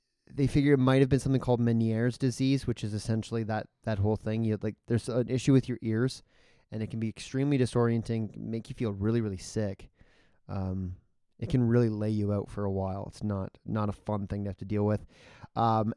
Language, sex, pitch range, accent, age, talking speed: English, male, 105-125 Hz, American, 30-49, 220 wpm